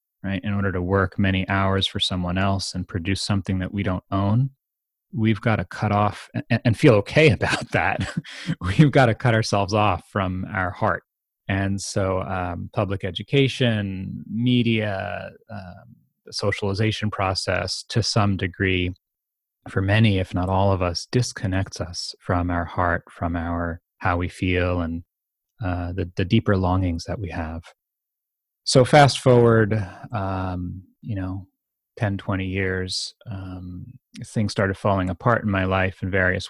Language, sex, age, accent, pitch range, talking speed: English, male, 30-49, American, 95-110 Hz, 155 wpm